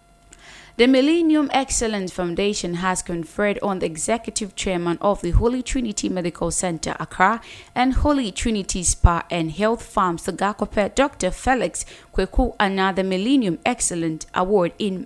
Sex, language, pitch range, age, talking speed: female, English, 180-230 Hz, 20-39, 135 wpm